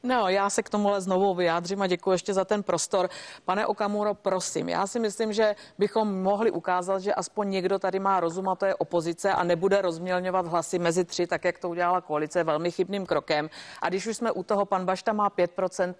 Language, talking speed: Czech, 220 wpm